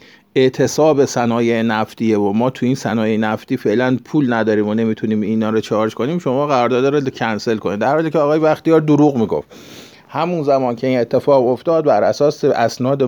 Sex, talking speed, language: male, 180 wpm, Persian